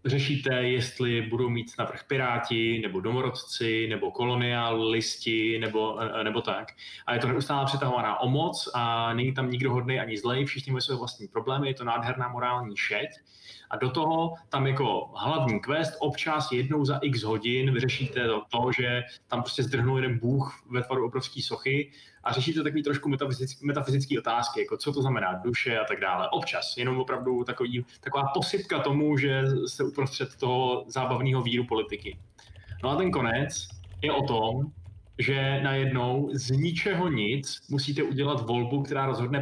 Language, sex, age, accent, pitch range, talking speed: Czech, male, 20-39, native, 125-145 Hz, 165 wpm